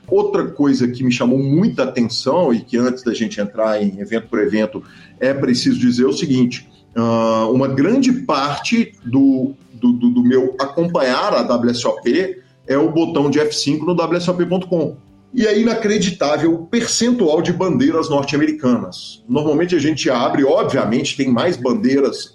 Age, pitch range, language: 40-59, 130-180 Hz, Portuguese